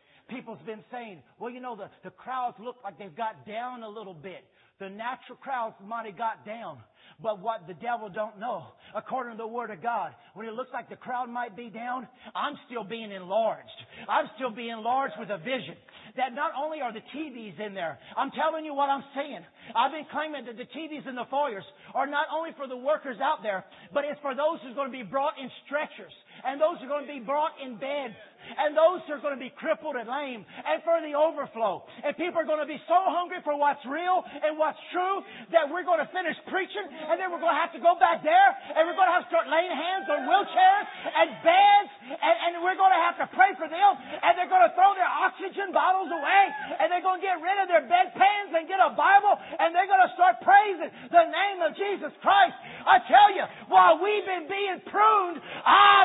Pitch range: 245-360 Hz